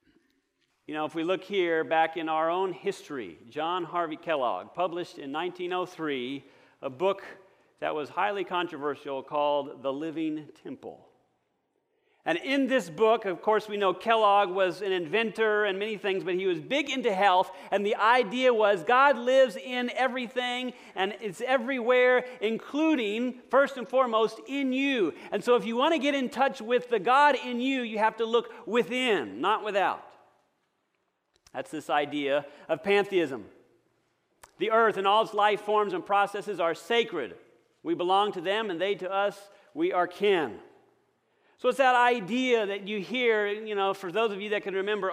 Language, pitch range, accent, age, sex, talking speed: English, 180-255 Hz, American, 40-59, male, 170 wpm